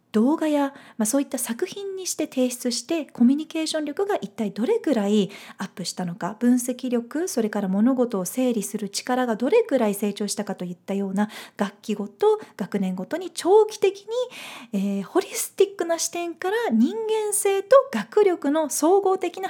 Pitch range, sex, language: 200-270 Hz, female, Japanese